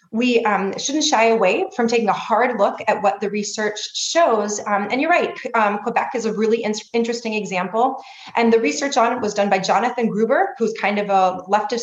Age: 30-49